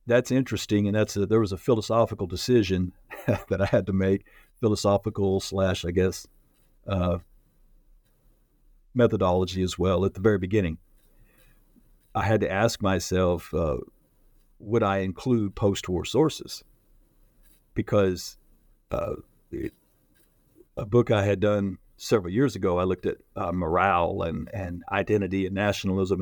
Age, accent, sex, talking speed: 50-69, American, male, 130 wpm